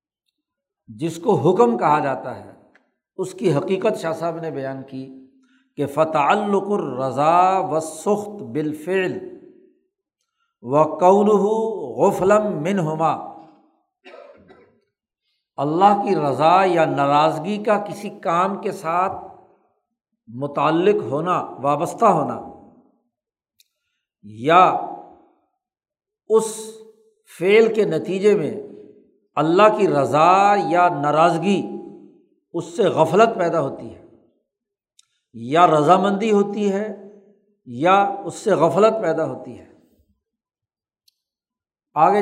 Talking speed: 95 wpm